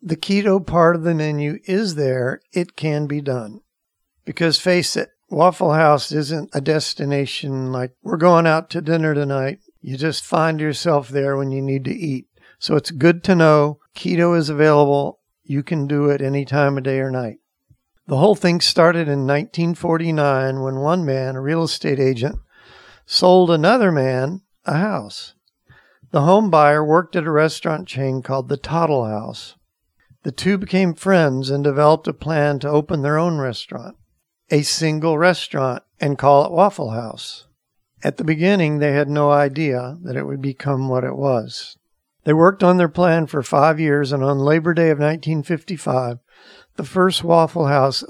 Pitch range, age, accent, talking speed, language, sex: 140-170 Hz, 60-79, American, 170 wpm, English, male